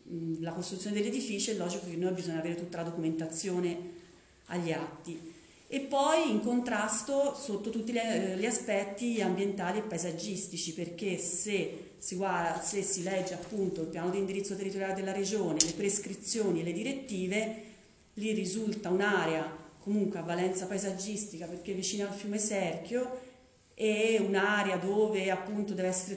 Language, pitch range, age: Italian, 175-205 Hz, 40-59